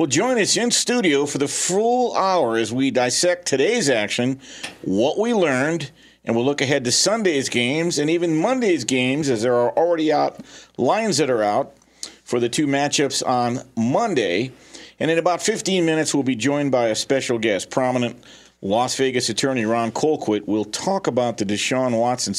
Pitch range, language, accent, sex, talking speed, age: 115-155 Hz, English, American, male, 180 wpm, 50-69